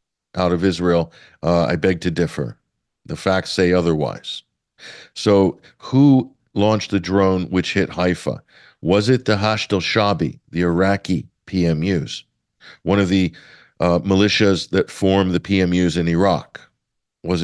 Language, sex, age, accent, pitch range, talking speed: English, male, 50-69, American, 85-100 Hz, 140 wpm